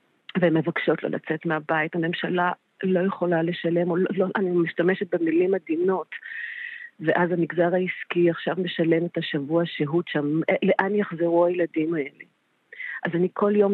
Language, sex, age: Hebrew, female, 40-59